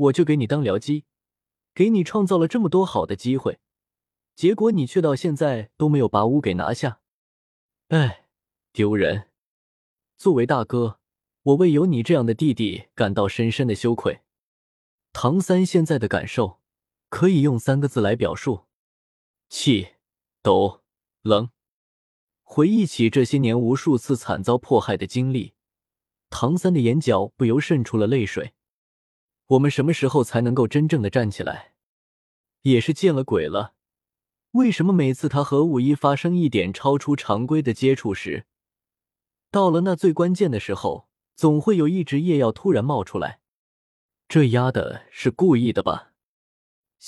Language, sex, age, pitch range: Chinese, male, 20-39, 110-155 Hz